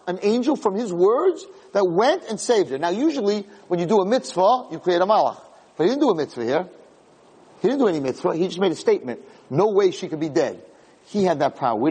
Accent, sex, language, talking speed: American, male, English, 245 wpm